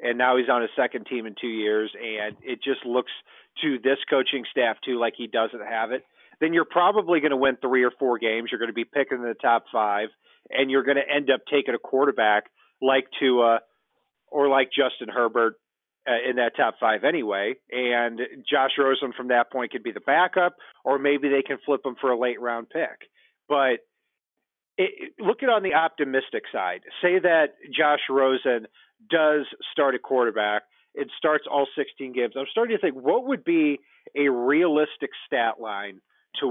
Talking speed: 190 wpm